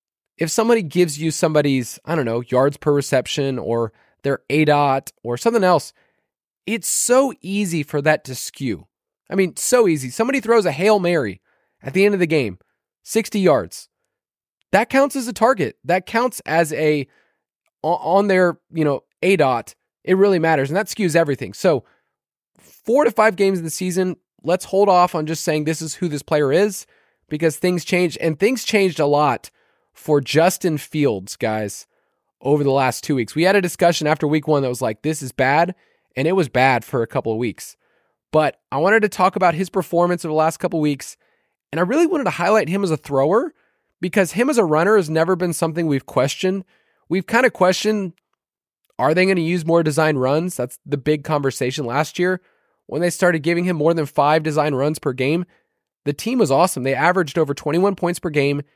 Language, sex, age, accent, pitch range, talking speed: English, male, 20-39, American, 145-190 Hz, 205 wpm